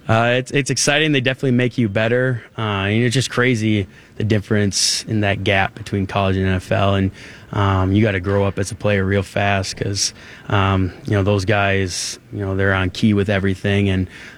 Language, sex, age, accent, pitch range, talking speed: English, male, 20-39, American, 95-110 Hz, 205 wpm